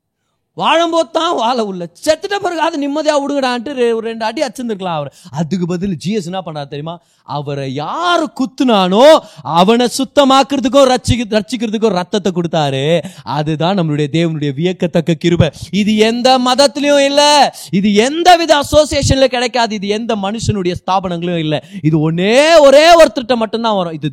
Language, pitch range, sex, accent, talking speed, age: Tamil, 165-245 Hz, male, native, 80 wpm, 30-49